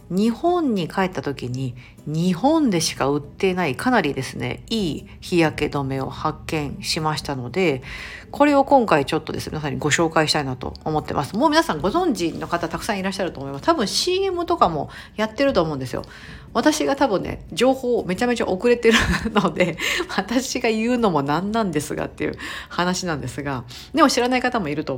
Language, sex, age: Japanese, female, 50-69